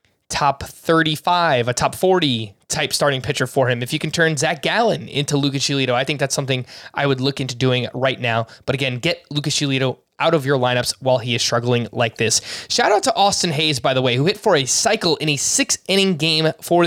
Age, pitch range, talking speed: 20-39, 135-170 Hz, 230 wpm